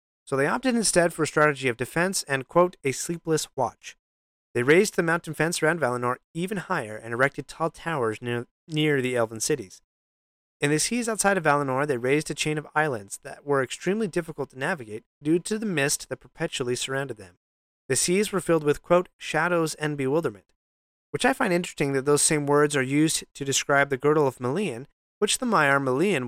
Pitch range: 125-170 Hz